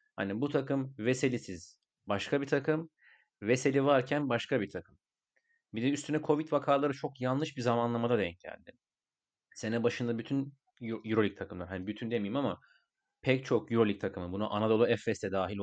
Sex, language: male, Turkish